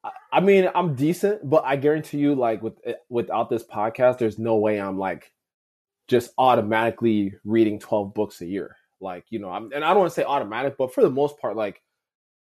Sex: male